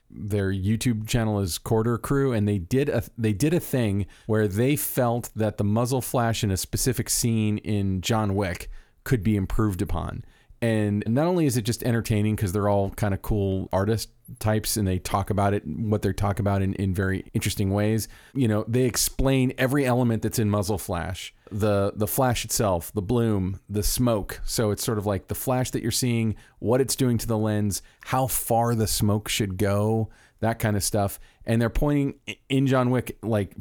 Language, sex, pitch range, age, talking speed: English, male, 100-125 Hz, 40-59, 200 wpm